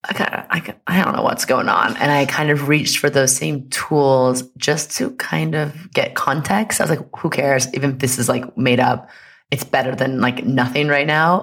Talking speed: 230 wpm